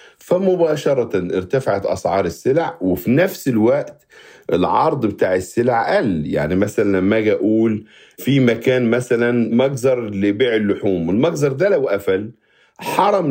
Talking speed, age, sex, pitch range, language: 120 wpm, 50-69, male, 100-135 Hz, Arabic